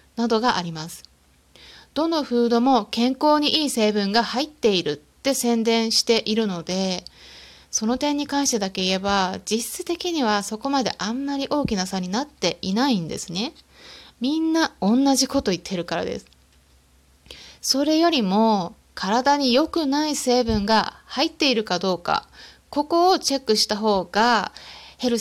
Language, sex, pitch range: Japanese, female, 195-280 Hz